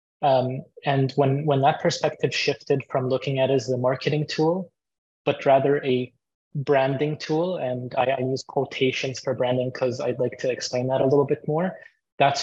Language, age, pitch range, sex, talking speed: English, 20-39, 130-145 Hz, male, 185 wpm